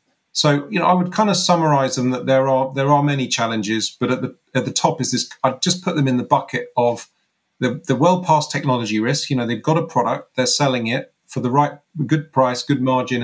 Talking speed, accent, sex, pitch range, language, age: 245 wpm, British, male, 120-145 Hz, English, 40-59